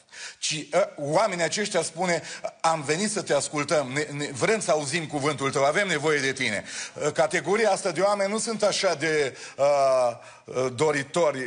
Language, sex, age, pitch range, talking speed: Romanian, male, 40-59, 150-200 Hz, 155 wpm